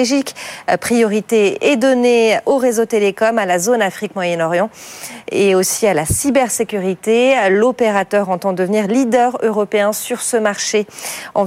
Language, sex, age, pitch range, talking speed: French, female, 40-59, 195-235 Hz, 130 wpm